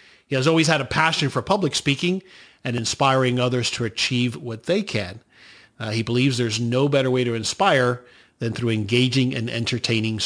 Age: 50-69